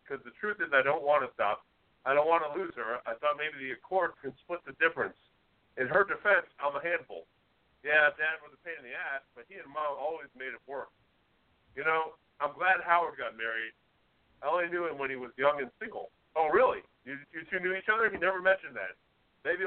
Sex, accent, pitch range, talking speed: male, American, 140-180 Hz, 230 wpm